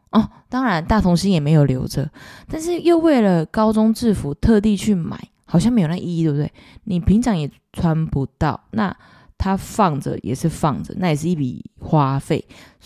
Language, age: Chinese, 20-39